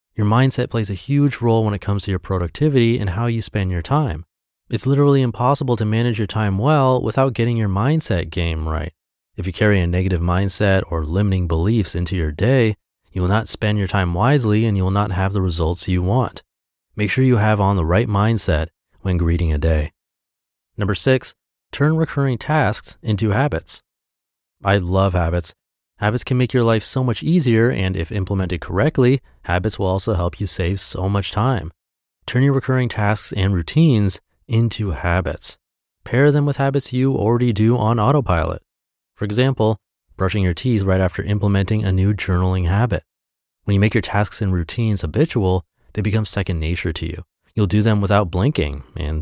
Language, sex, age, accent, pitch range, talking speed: English, male, 30-49, American, 90-120 Hz, 185 wpm